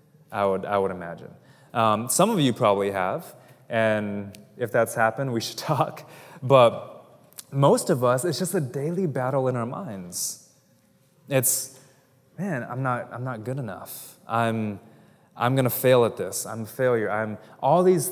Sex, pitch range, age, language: male, 110-130 Hz, 20-39, English